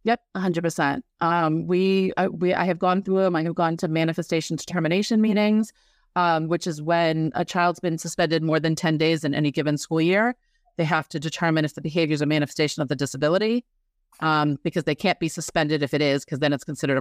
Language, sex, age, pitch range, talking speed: English, female, 30-49, 155-195 Hz, 220 wpm